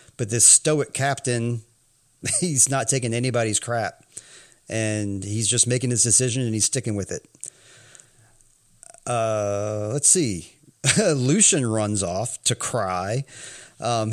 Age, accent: 40-59, American